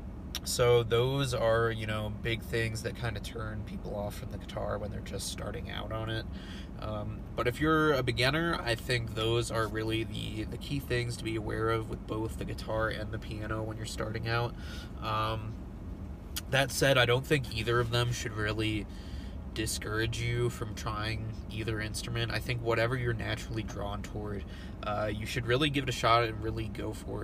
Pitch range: 105-115 Hz